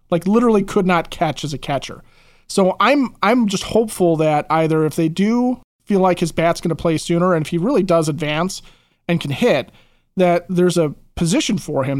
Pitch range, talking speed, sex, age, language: 155-185 Hz, 205 wpm, male, 30-49, English